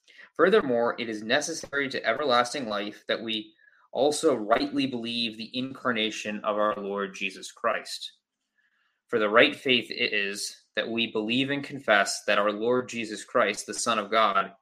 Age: 20-39